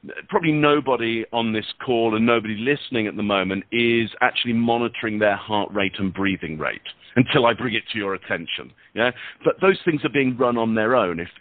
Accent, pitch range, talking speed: British, 110-155 Hz, 200 wpm